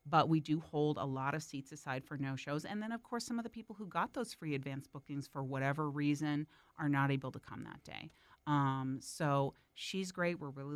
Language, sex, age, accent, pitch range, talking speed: English, female, 40-59, American, 145-185 Hz, 230 wpm